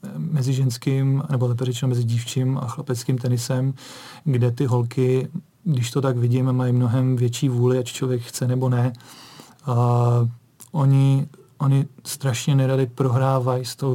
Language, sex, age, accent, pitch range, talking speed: Czech, male, 40-59, native, 130-140 Hz, 140 wpm